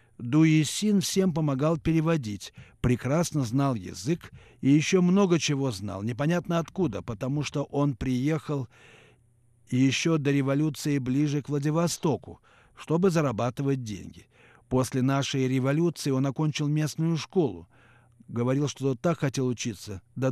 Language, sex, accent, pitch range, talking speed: Russian, male, native, 120-150 Hz, 120 wpm